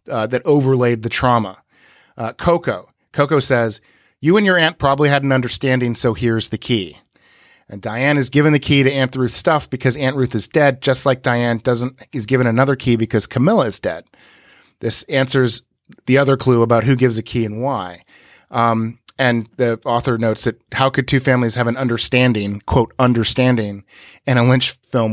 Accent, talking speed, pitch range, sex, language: American, 190 wpm, 115-135 Hz, male, English